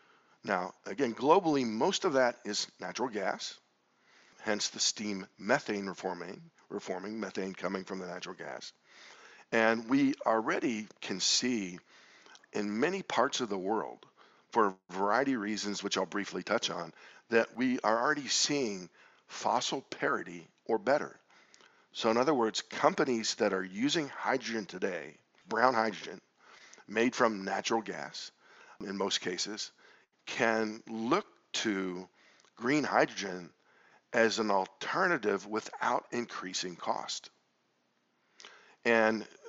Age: 50-69